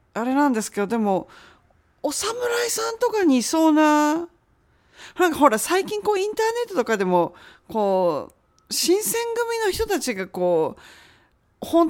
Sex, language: female, Japanese